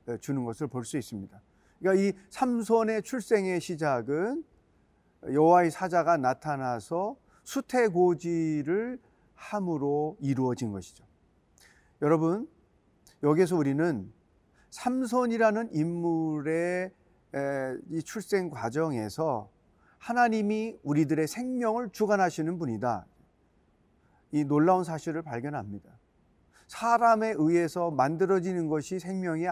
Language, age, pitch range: Korean, 40-59, 145-205 Hz